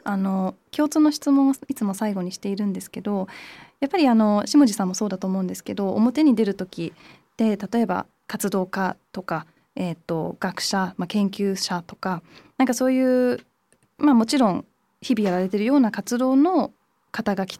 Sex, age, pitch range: female, 20-39, 190-260 Hz